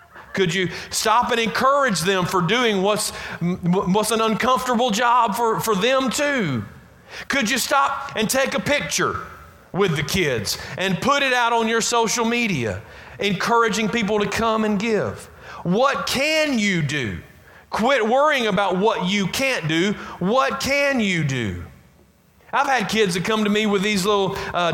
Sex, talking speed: male, 165 wpm